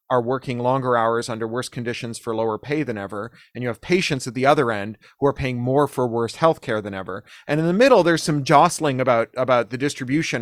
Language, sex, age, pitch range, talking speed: English, male, 30-49, 115-140 Hz, 235 wpm